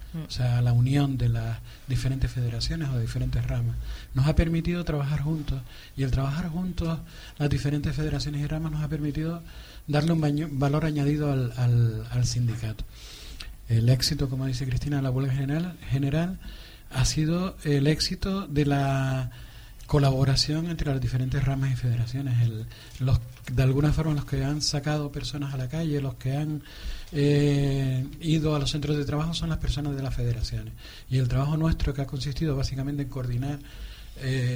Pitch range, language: 125-150 Hz, Spanish